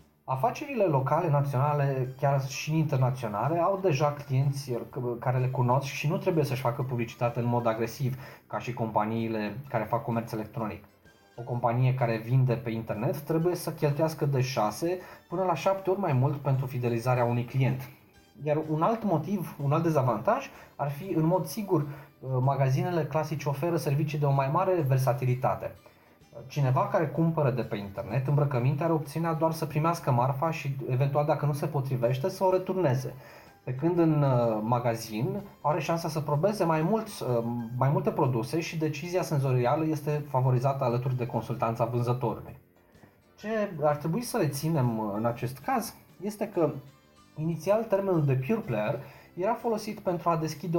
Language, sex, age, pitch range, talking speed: Romanian, male, 20-39, 120-165 Hz, 160 wpm